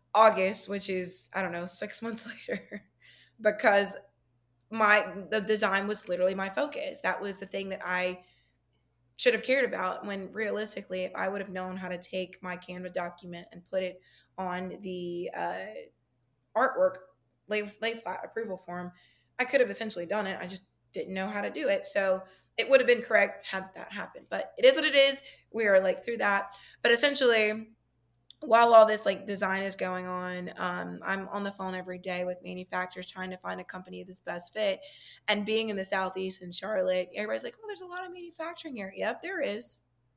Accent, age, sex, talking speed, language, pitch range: American, 20-39, female, 195 wpm, English, 180-225 Hz